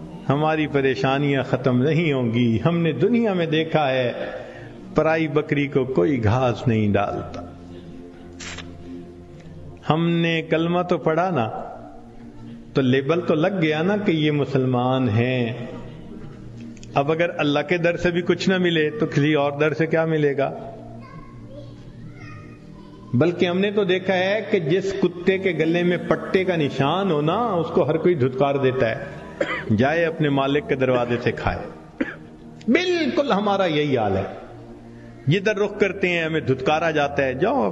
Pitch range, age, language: 125-185 Hz, 50-69, Urdu